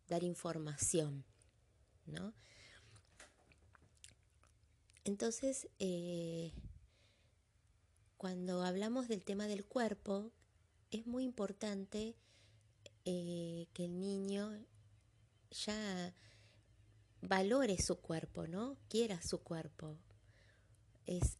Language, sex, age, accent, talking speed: Spanish, female, 20-39, Argentinian, 75 wpm